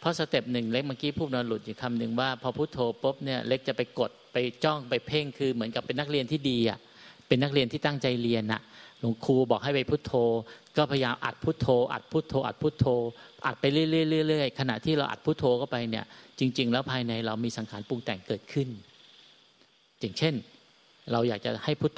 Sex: male